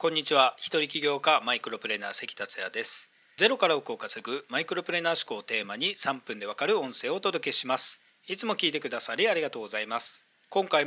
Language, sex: Japanese, male